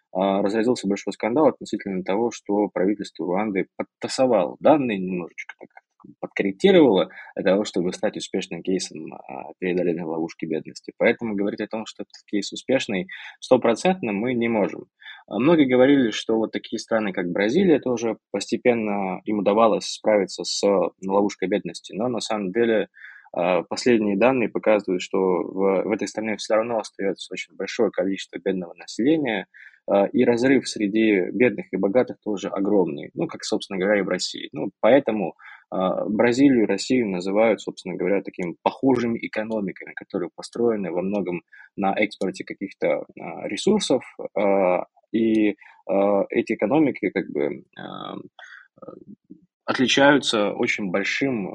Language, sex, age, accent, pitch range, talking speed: Russian, male, 20-39, native, 100-120 Hz, 130 wpm